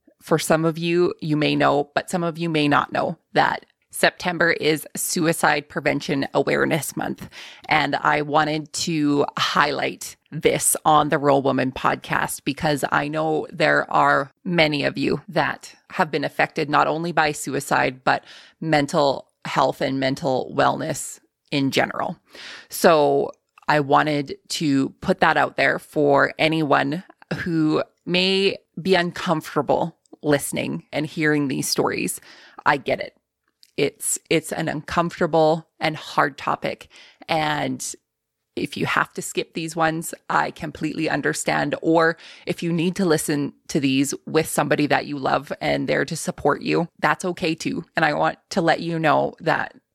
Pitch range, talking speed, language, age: 145-170 Hz, 150 wpm, English, 20-39